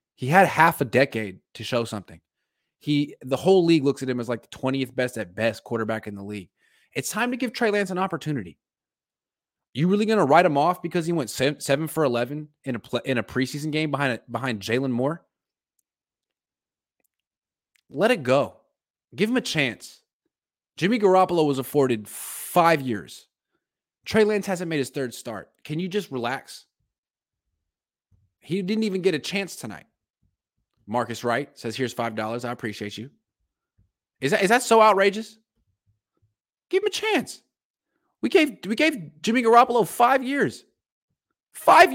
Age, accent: 20-39, American